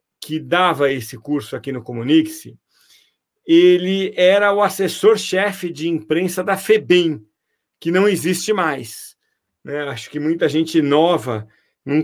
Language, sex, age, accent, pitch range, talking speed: Portuguese, male, 40-59, Brazilian, 150-185 Hz, 130 wpm